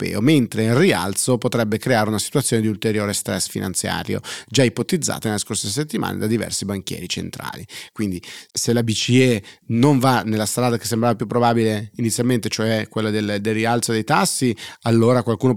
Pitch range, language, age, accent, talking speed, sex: 105-120 Hz, Italian, 30-49, native, 160 wpm, male